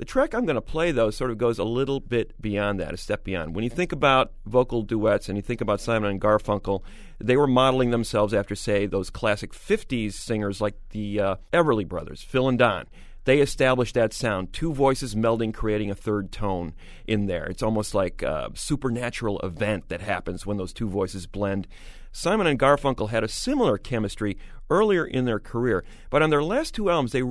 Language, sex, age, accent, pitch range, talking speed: English, male, 40-59, American, 100-130 Hz, 205 wpm